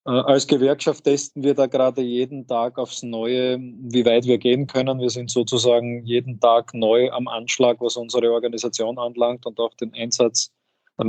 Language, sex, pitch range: German, male, 115-125 Hz